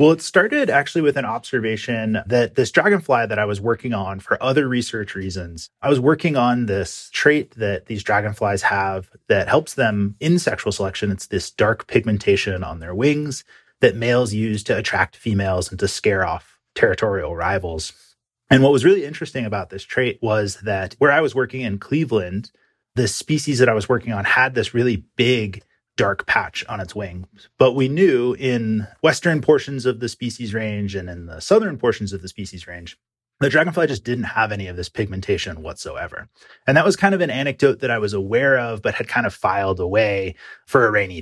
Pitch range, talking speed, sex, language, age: 100-130 Hz, 200 wpm, male, English, 30-49